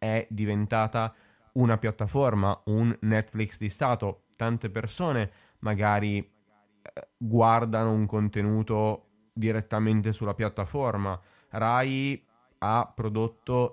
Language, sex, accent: Italian, male, native